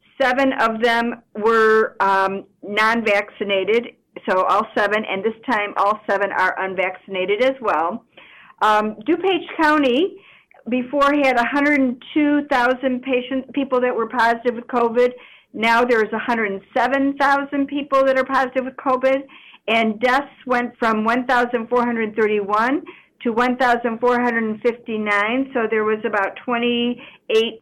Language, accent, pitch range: English, American, 210-255 Hz